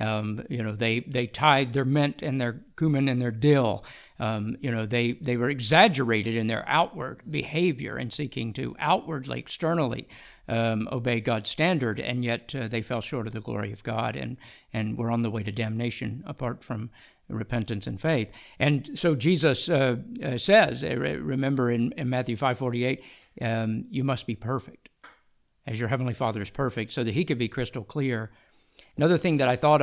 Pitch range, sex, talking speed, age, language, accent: 115-145 Hz, male, 185 wpm, 50-69, English, American